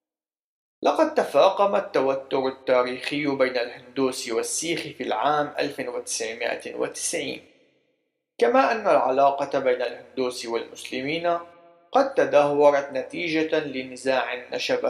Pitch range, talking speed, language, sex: 140-200 Hz, 85 wpm, Arabic, male